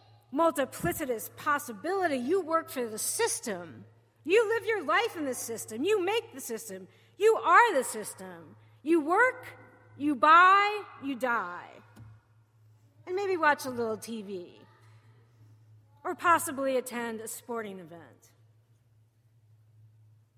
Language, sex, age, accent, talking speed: English, female, 40-59, American, 120 wpm